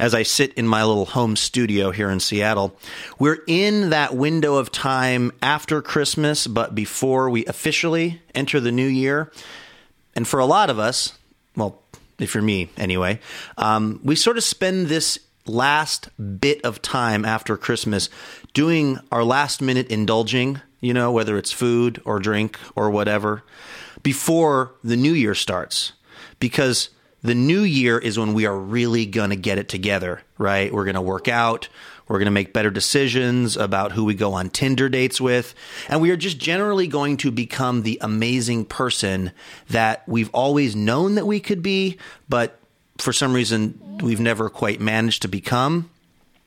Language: English